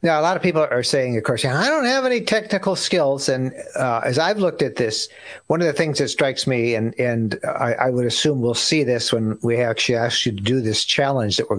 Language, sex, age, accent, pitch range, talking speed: English, male, 50-69, American, 120-160 Hz, 255 wpm